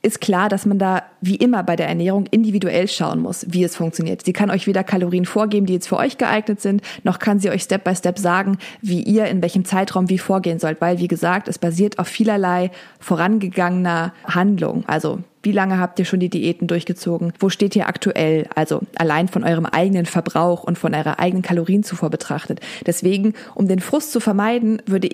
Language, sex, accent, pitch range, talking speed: German, female, German, 180-220 Hz, 205 wpm